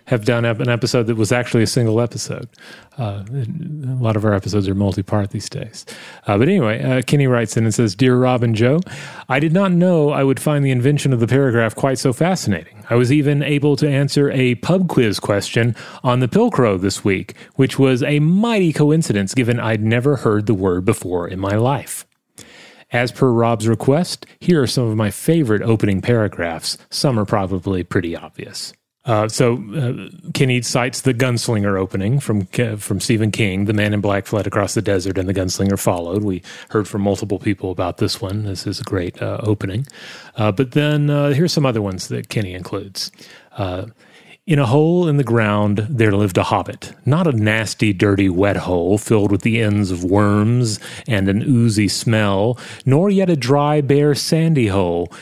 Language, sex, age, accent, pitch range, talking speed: English, male, 30-49, American, 100-135 Hz, 195 wpm